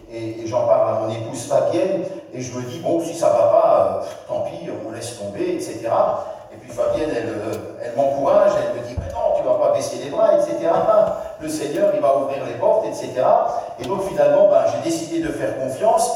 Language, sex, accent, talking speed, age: French, male, French, 240 wpm, 50-69